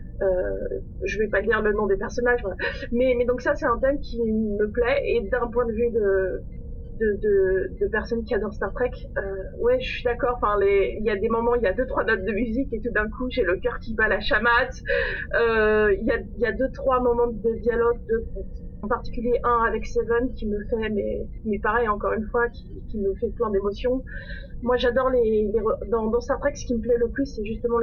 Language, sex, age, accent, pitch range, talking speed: French, female, 30-49, French, 210-245 Hz, 220 wpm